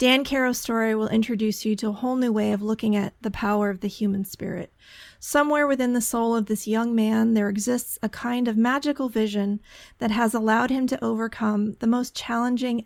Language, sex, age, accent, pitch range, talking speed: English, female, 30-49, American, 210-240 Hz, 205 wpm